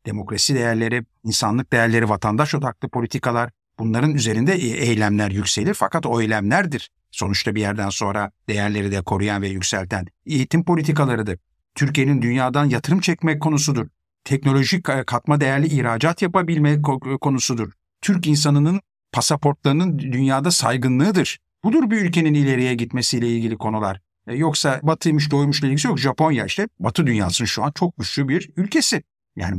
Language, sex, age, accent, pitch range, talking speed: Turkish, male, 50-69, native, 110-150 Hz, 130 wpm